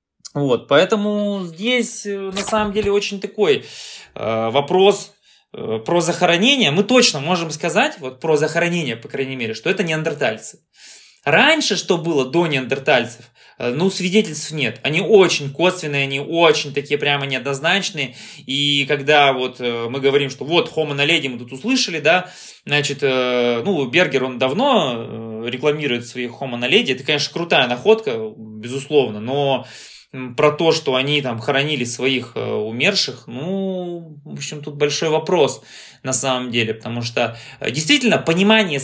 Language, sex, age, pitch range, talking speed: Russian, male, 20-39, 130-190 Hz, 150 wpm